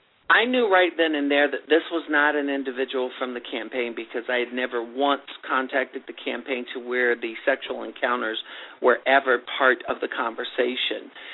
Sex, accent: male, American